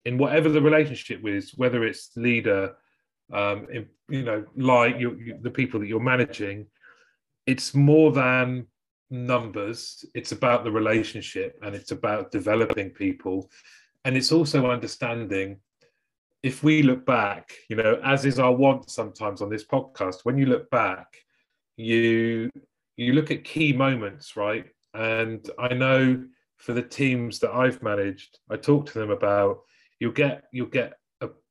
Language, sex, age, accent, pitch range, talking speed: English, male, 30-49, British, 110-140 Hz, 145 wpm